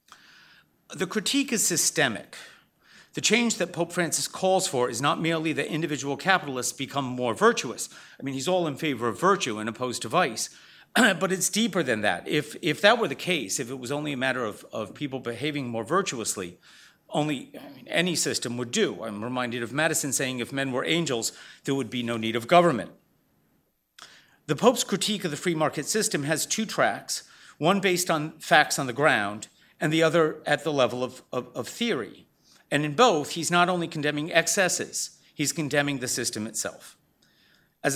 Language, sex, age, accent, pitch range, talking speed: English, male, 40-59, American, 125-170 Hz, 185 wpm